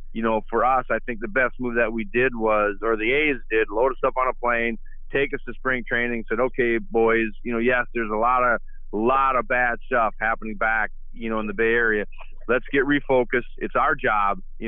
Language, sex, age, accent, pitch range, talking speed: English, male, 40-59, American, 110-130 Hz, 230 wpm